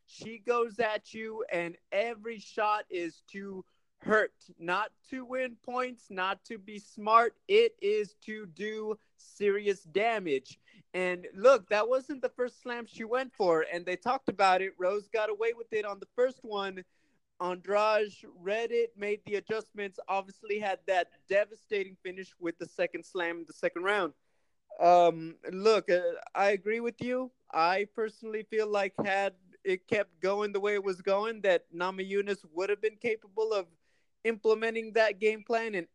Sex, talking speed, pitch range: male, 165 wpm, 185-225 Hz